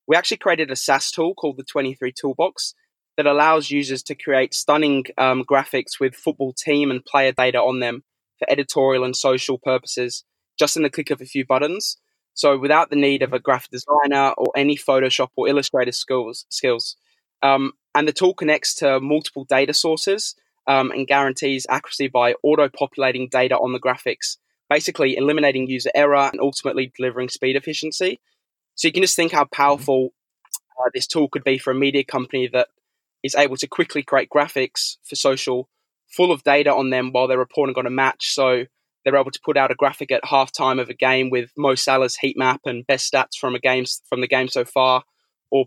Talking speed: 195 wpm